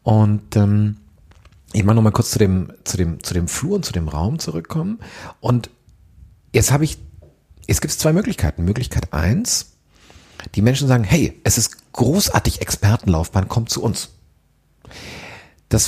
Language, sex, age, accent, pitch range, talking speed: German, male, 50-69, German, 80-115 Hz, 145 wpm